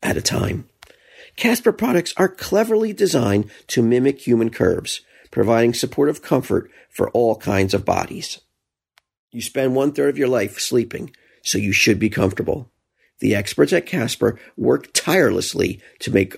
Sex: male